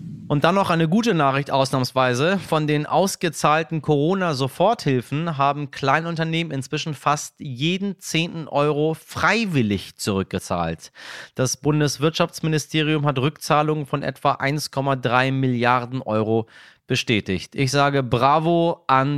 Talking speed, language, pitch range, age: 105 wpm, German, 120-155 Hz, 30-49